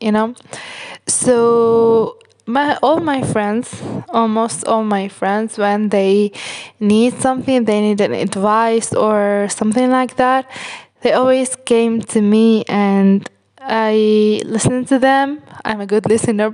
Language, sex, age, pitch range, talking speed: English, female, 10-29, 215-265 Hz, 135 wpm